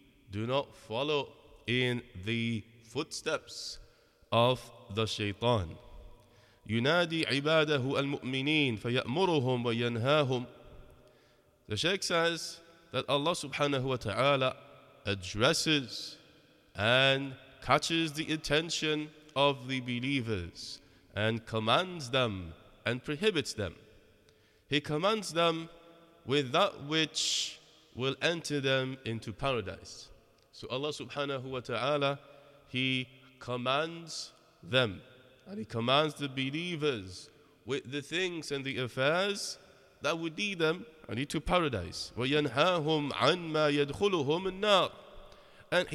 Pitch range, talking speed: 125-160 Hz, 100 wpm